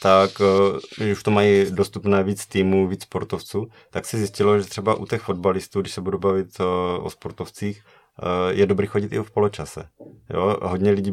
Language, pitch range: Czech, 90-100 Hz